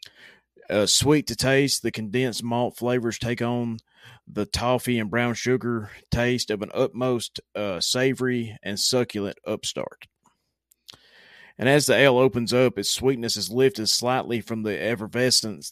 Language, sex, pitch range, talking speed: English, male, 105-120 Hz, 145 wpm